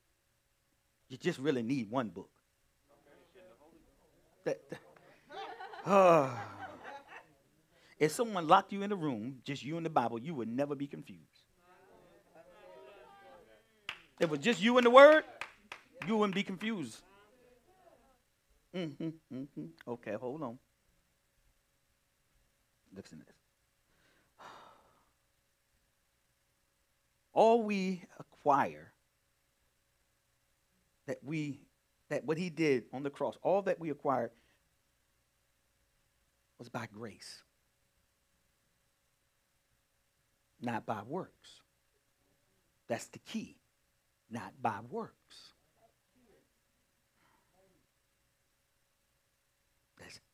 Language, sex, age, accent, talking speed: English, male, 50-69, American, 85 wpm